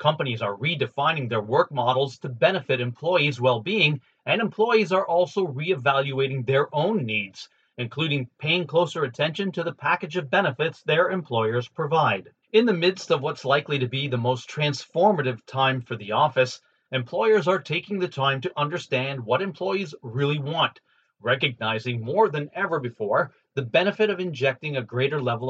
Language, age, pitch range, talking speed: English, 30-49, 130-180 Hz, 160 wpm